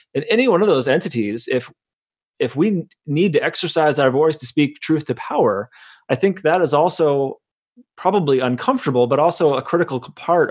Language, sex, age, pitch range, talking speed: English, male, 30-49, 130-165 Hz, 175 wpm